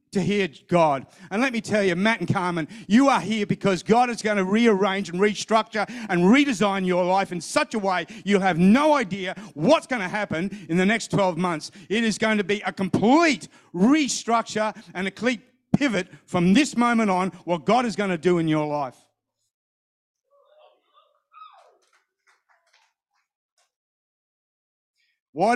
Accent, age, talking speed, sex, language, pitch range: Australian, 40-59, 160 wpm, male, English, 185-235 Hz